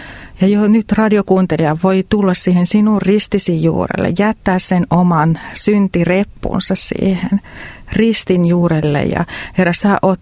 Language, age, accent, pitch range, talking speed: Finnish, 40-59, native, 165-195 Hz, 125 wpm